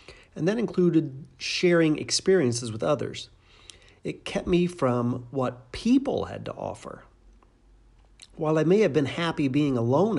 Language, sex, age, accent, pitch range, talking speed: English, male, 40-59, American, 120-155 Hz, 140 wpm